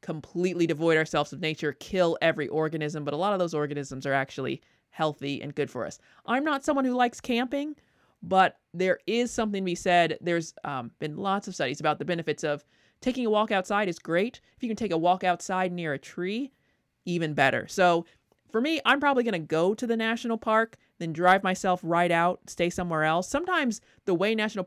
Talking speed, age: 210 wpm, 30-49